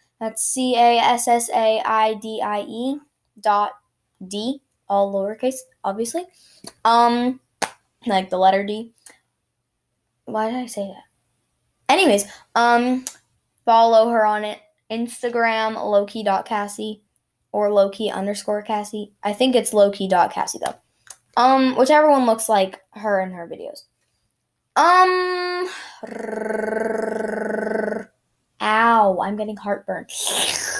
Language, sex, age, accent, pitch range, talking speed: English, female, 10-29, American, 200-235 Hz, 95 wpm